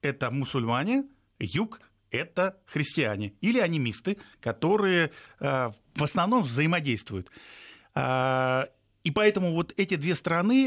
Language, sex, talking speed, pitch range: Russian, male, 95 wpm, 125-170 Hz